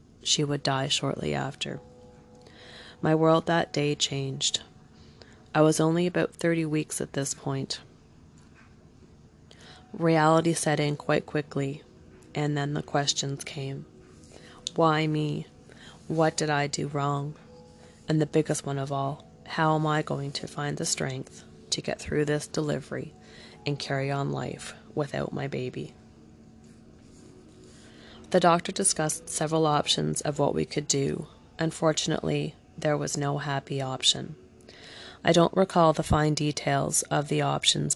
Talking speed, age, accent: 140 wpm, 30-49, American